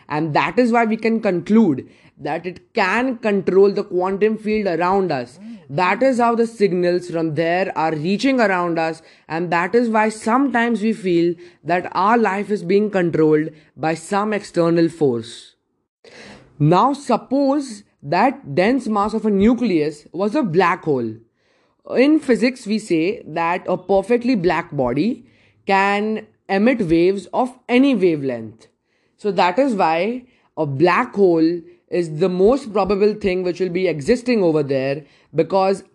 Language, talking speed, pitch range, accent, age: English, 150 wpm, 160-215 Hz, Indian, 20-39